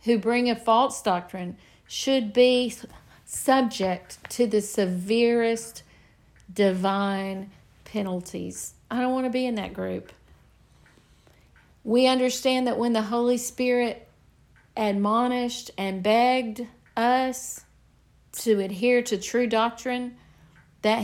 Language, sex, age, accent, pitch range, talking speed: English, female, 50-69, American, 200-245 Hz, 110 wpm